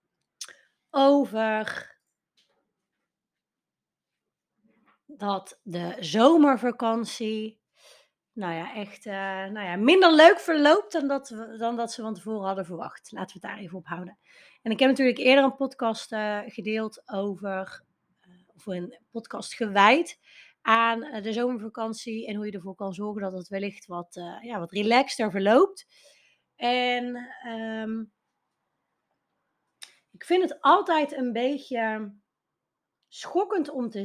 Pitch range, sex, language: 210-270 Hz, female, Dutch